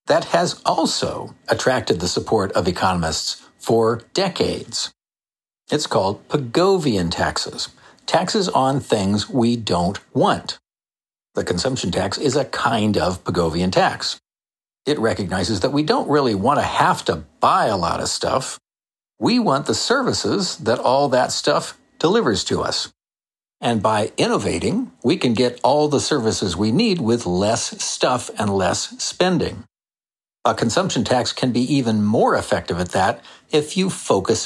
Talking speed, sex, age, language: 150 wpm, male, 50-69, English